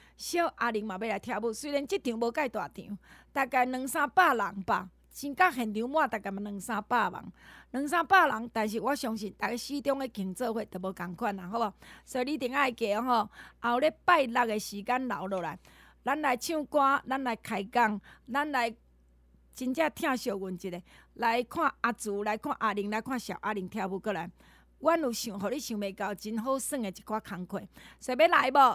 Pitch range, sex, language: 210-280 Hz, female, Chinese